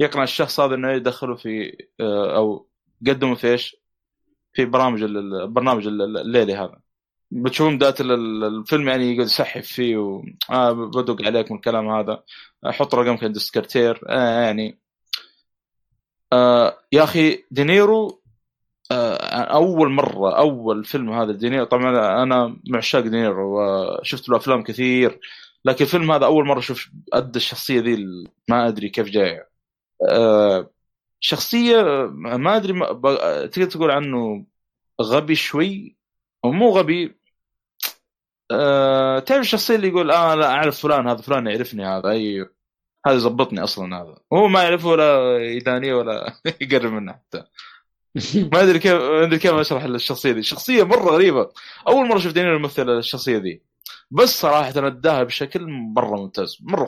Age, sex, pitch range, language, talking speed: 20-39, male, 115-155 Hz, Arabic, 135 wpm